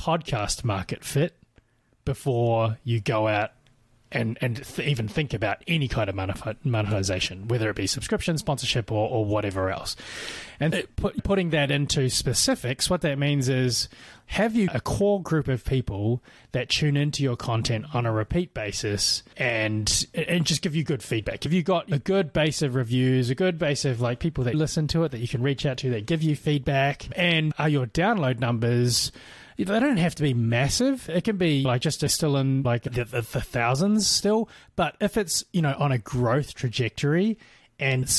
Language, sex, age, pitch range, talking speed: English, male, 20-39, 115-155 Hz, 190 wpm